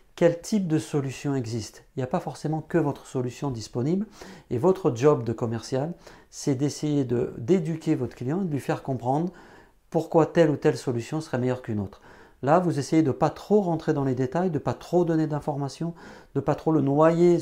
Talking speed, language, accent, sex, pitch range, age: 205 wpm, French, French, male, 125-160 Hz, 40-59